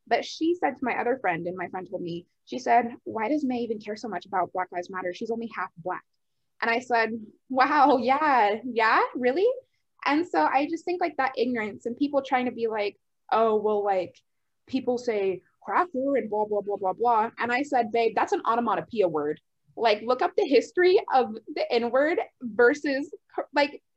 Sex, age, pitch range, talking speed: female, 20-39, 220-295 Hz, 200 wpm